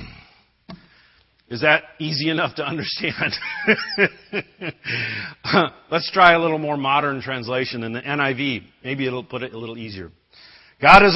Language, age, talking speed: English, 40-59, 135 wpm